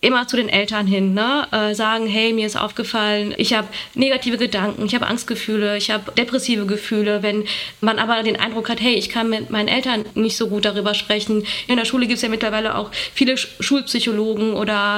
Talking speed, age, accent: 200 wpm, 20-39, German